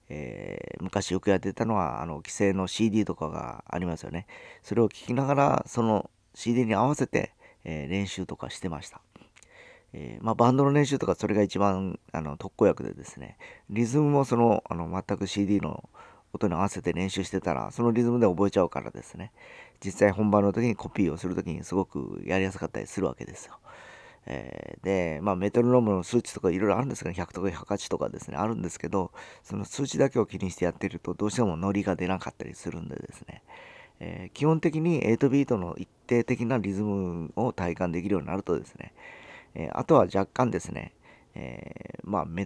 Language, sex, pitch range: Japanese, male, 90-115 Hz